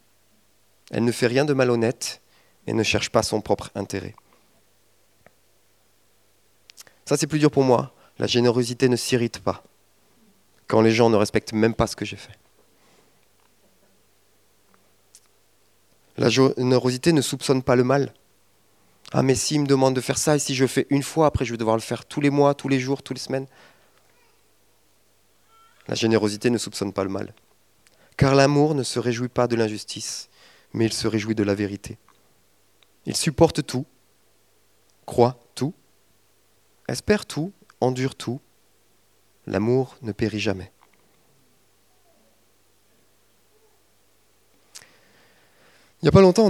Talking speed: 145 wpm